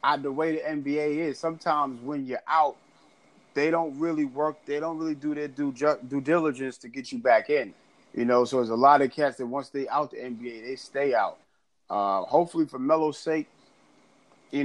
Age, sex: 30-49, male